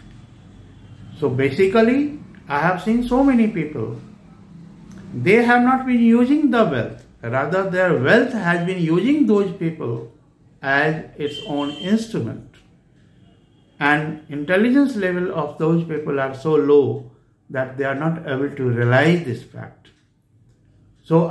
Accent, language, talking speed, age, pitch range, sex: Indian, English, 130 wpm, 60-79, 140-220 Hz, male